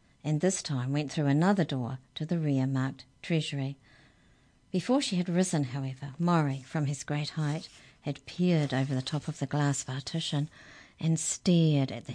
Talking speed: 170 wpm